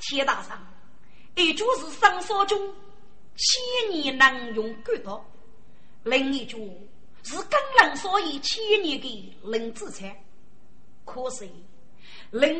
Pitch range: 245-380 Hz